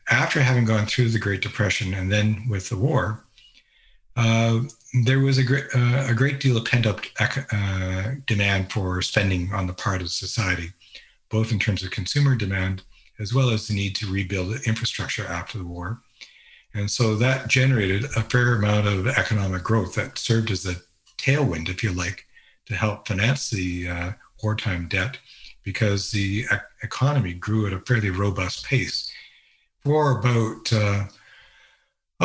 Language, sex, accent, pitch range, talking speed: English, male, American, 100-125 Hz, 160 wpm